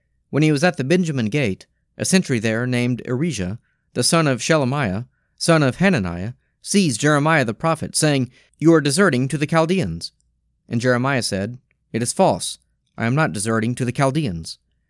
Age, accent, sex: 30-49, American, male